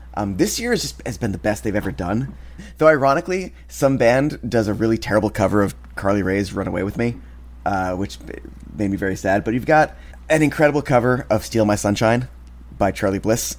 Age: 20-39